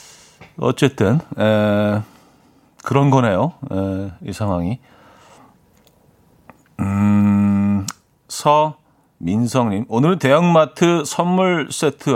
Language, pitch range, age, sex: Korean, 105-140 Hz, 40-59, male